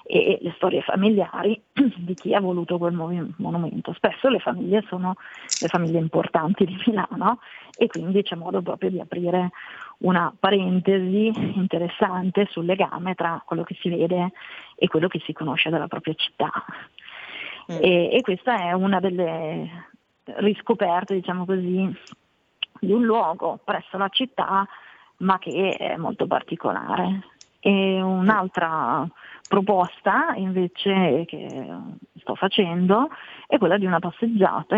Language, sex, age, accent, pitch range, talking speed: Italian, female, 40-59, native, 175-205 Hz, 130 wpm